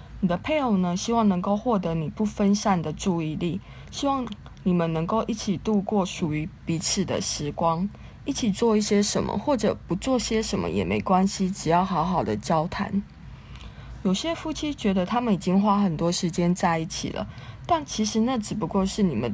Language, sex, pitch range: Chinese, female, 175-215 Hz